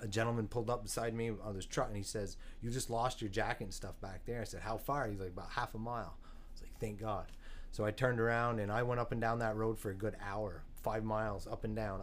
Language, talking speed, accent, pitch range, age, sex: English, 285 wpm, American, 95-120 Hz, 30-49, male